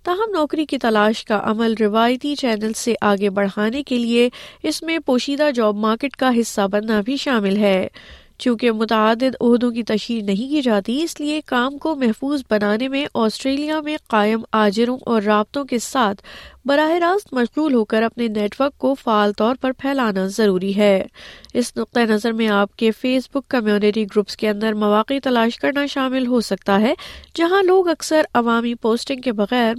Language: Urdu